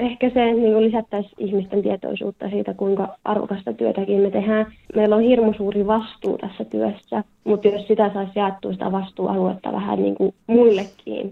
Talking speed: 160 wpm